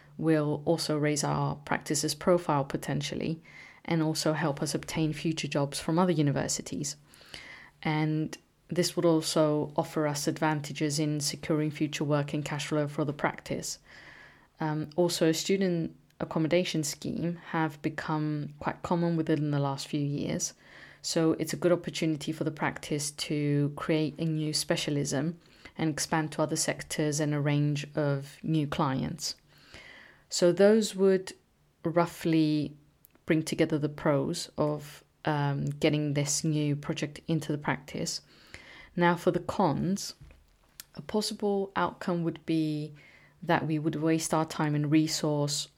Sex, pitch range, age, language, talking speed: female, 150-165 Hz, 30-49, English, 140 wpm